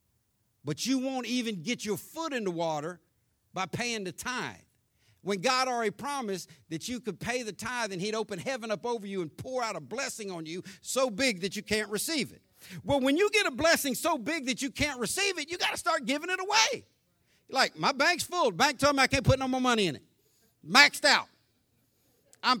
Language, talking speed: English, 220 wpm